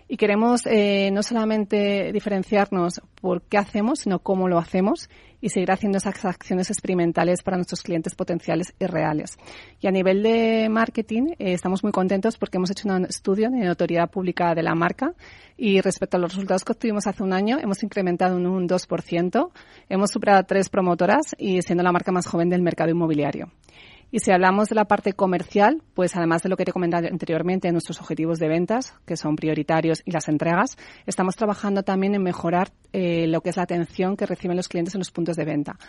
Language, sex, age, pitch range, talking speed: Spanish, female, 30-49, 165-200 Hz, 200 wpm